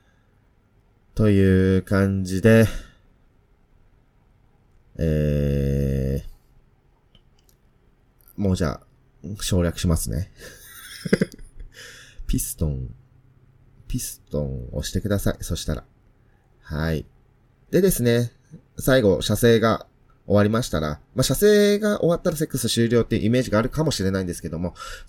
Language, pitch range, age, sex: Japanese, 85-125 Hz, 30-49, male